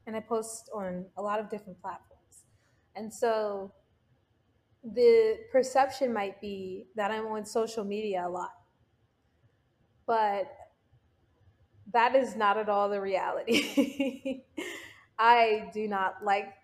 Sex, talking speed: female, 125 wpm